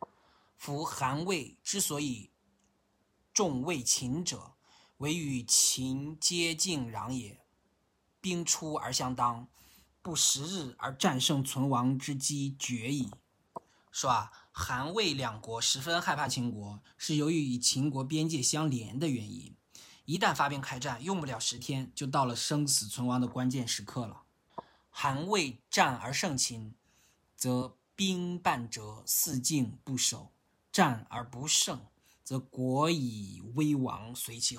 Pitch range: 120-150 Hz